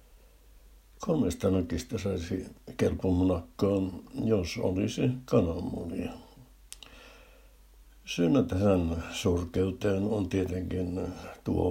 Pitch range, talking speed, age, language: 85-100 Hz, 65 wpm, 60-79, Finnish